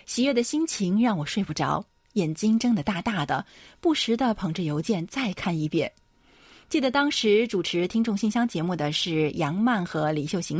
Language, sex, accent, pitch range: Chinese, female, native, 165-230 Hz